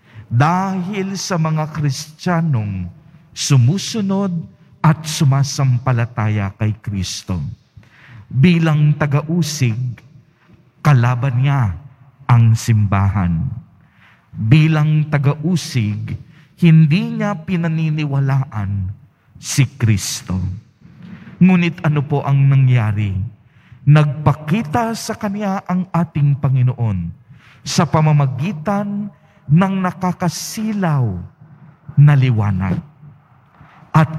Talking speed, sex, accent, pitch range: 70 wpm, male, native, 115-160 Hz